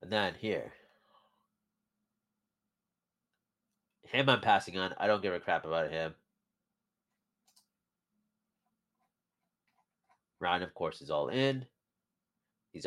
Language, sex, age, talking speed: English, male, 30-49, 100 wpm